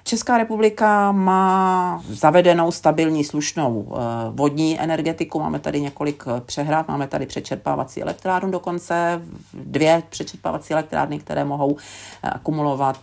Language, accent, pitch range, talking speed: Czech, native, 120-150 Hz, 105 wpm